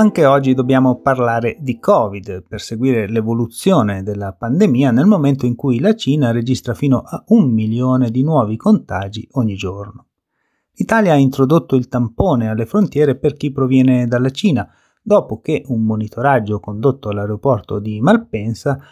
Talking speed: 150 wpm